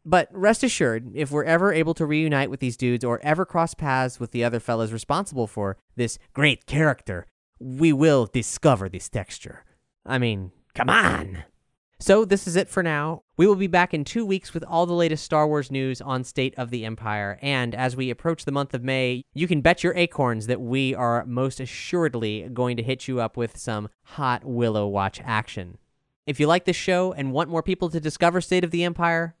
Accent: American